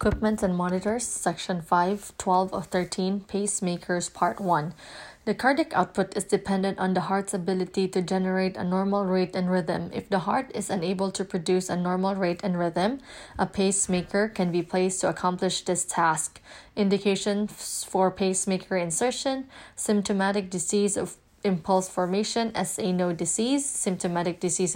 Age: 20-39